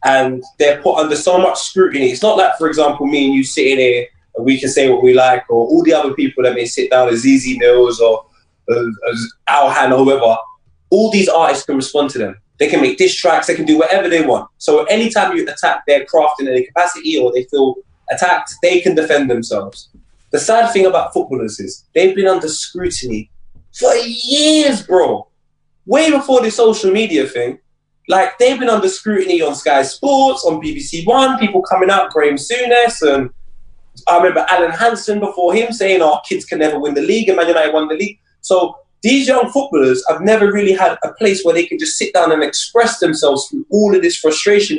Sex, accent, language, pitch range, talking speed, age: male, British, English, 145-235 Hz, 210 wpm, 20-39